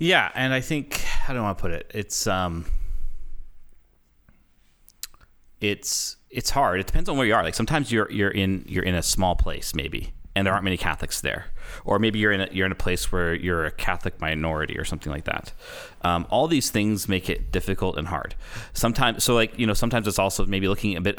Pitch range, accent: 85-105 Hz, American